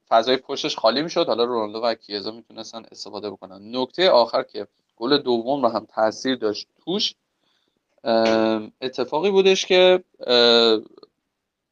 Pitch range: 110-145 Hz